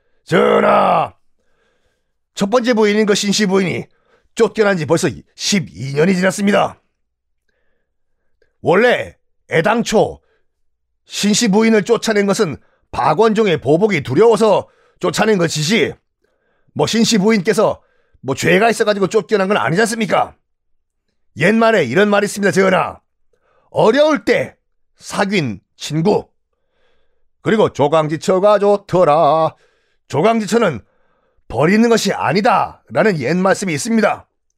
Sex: male